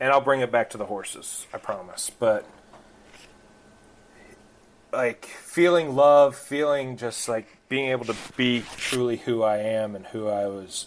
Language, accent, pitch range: English, American, 110-130 Hz